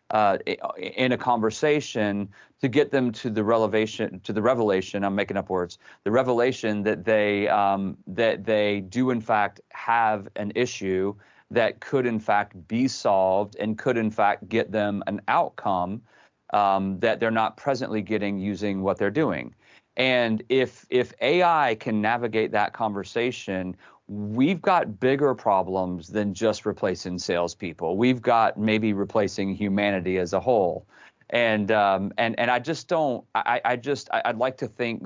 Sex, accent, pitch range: male, American, 100-120 Hz